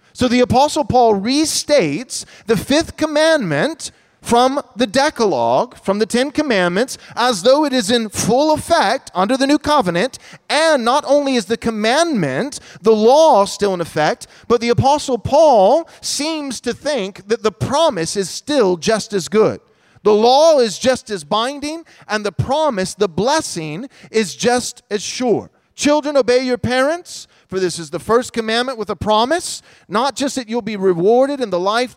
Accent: American